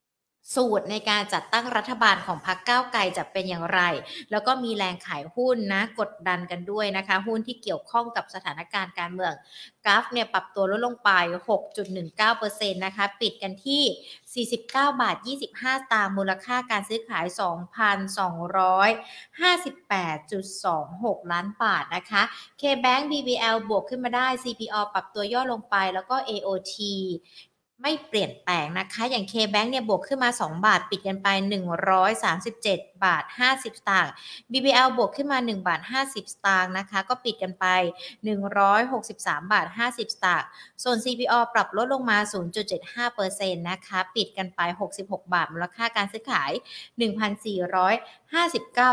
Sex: female